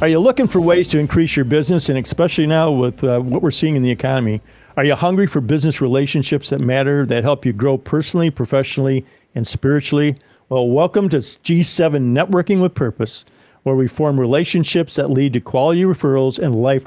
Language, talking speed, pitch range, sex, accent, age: English, 190 wpm, 135-170 Hz, male, American, 50-69